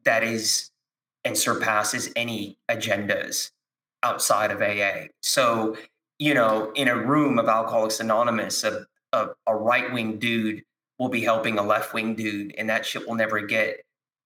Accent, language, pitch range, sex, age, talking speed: American, English, 110-130 Hz, male, 30-49, 145 wpm